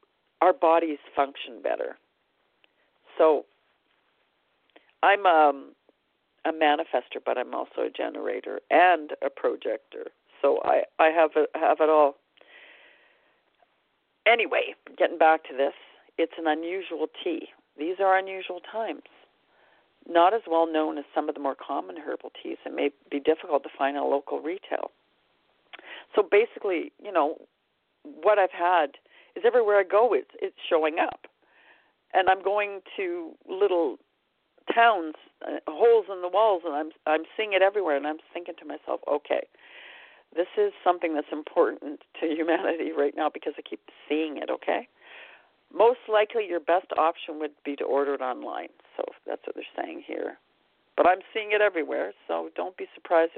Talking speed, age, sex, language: 155 wpm, 50-69, female, English